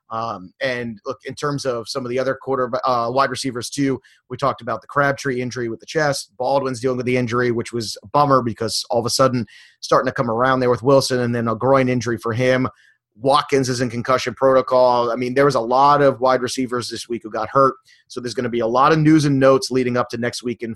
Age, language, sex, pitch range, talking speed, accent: 30-49, English, male, 120-145 Hz, 255 wpm, American